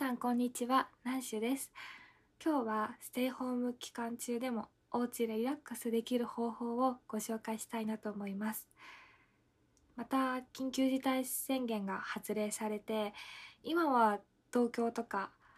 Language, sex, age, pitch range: Japanese, female, 20-39, 210-265 Hz